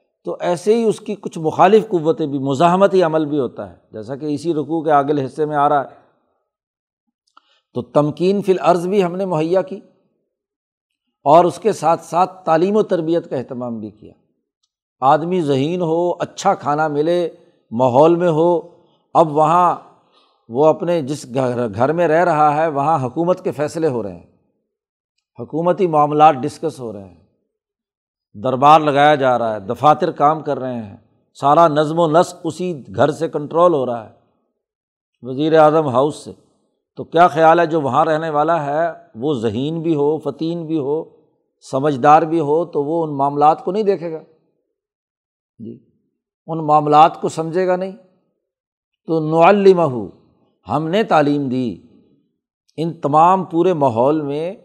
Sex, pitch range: male, 145-175 Hz